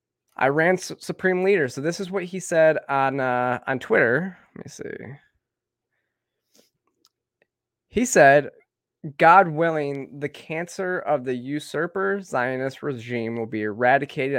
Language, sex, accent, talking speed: English, male, American, 125 wpm